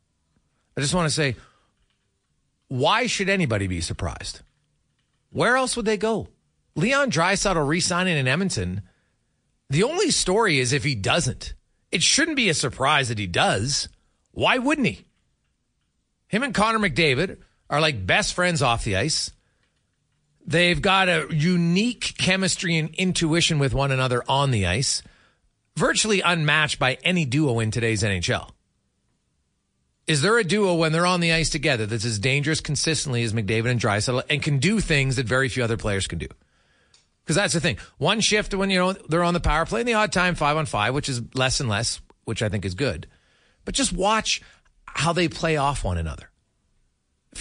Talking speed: 175 wpm